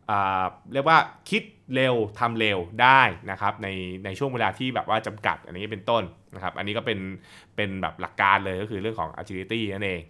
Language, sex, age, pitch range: Thai, male, 20-39, 100-145 Hz